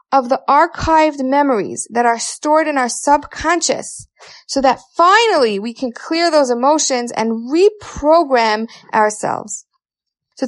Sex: female